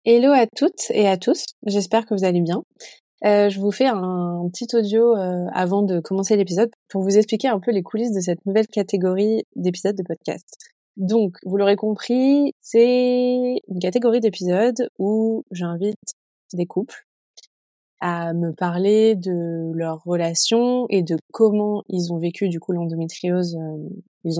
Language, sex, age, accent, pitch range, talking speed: French, female, 20-39, French, 170-210 Hz, 160 wpm